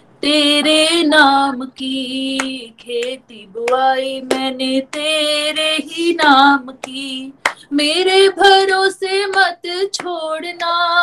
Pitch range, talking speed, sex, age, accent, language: 265-350 Hz, 75 wpm, female, 20-39, native, Hindi